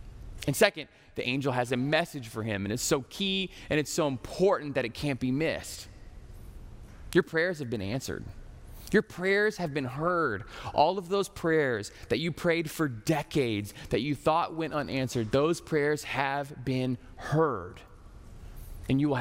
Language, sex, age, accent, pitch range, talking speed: English, male, 20-39, American, 125-200 Hz, 170 wpm